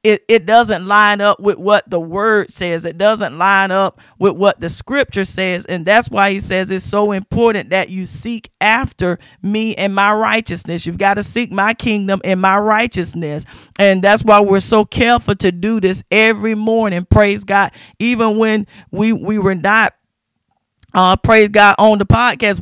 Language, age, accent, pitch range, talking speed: English, 40-59, American, 190-220 Hz, 185 wpm